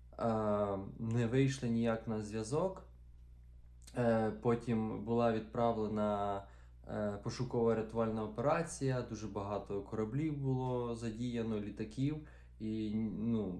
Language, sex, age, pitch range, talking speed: Ukrainian, male, 20-39, 100-120 Hz, 85 wpm